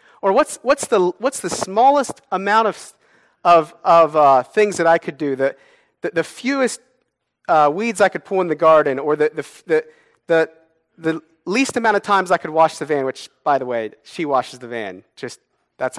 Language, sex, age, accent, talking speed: English, male, 40-59, American, 200 wpm